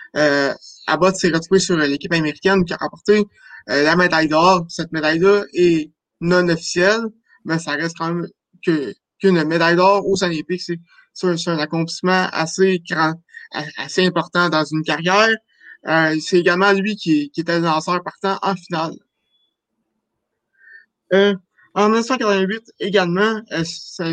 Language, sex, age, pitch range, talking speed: French, male, 20-39, 165-200 Hz, 140 wpm